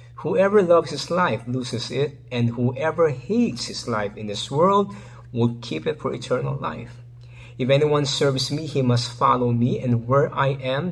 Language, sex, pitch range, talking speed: English, male, 120-140 Hz, 175 wpm